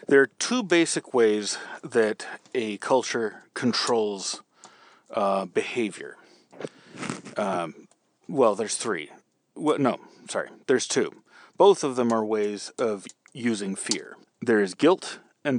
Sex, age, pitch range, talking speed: male, 30-49, 105-135 Hz, 125 wpm